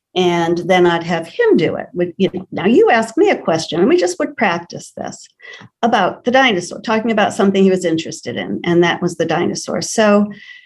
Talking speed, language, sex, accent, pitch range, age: 195 wpm, English, female, American, 175-215 Hz, 50-69